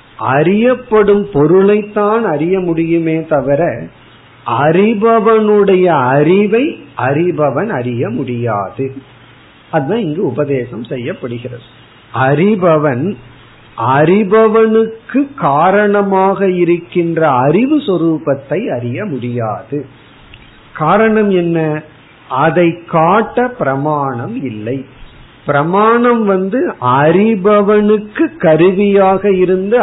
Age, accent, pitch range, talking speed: 50-69, native, 135-200 Hz, 65 wpm